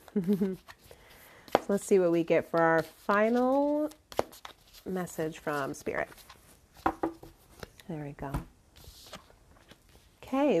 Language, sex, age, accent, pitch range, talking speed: English, female, 30-49, American, 170-235 Hz, 90 wpm